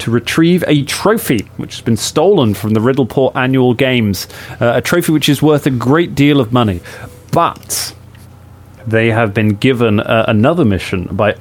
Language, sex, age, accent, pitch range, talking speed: English, male, 30-49, British, 105-130 Hz, 175 wpm